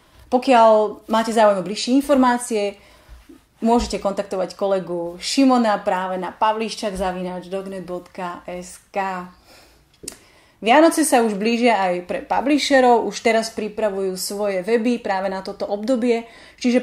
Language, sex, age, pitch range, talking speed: Slovak, female, 30-49, 190-230 Hz, 105 wpm